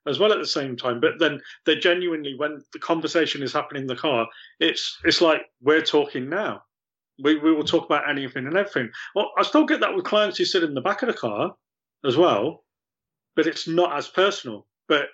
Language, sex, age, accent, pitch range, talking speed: English, male, 30-49, British, 125-175 Hz, 220 wpm